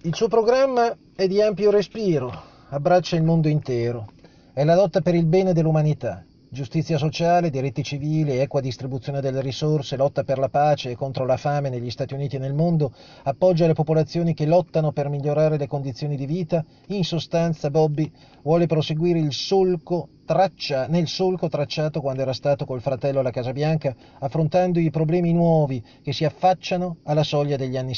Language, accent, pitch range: Italian, native, 135-175 Hz